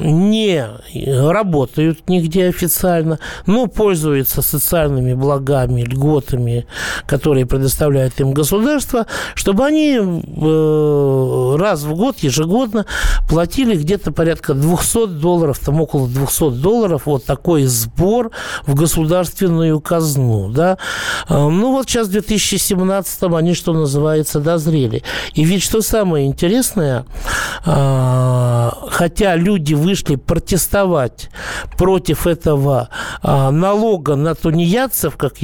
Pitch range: 135-180 Hz